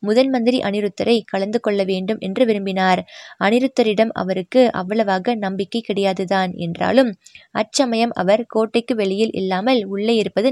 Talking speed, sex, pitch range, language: 115 wpm, female, 195-235 Hz, Tamil